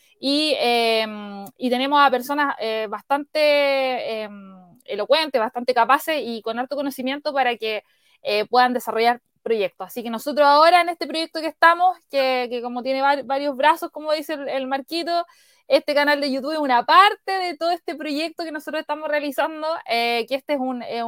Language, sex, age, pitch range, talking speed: Spanish, female, 20-39, 235-310 Hz, 180 wpm